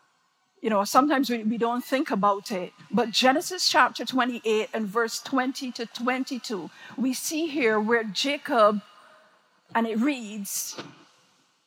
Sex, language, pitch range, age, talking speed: female, English, 215-275 Hz, 50-69, 135 wpm